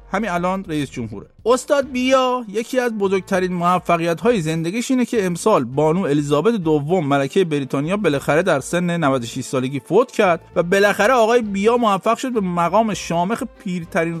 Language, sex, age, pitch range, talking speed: Persian, male, 50-69, 165-240 Hz, 150 wpm